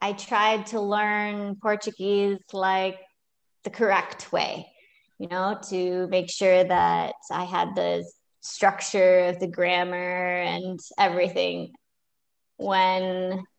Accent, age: American, 20-39